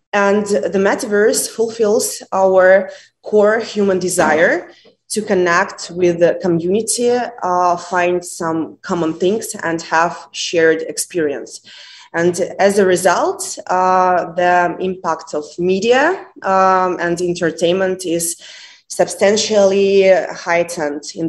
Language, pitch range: English, 170-195 Hz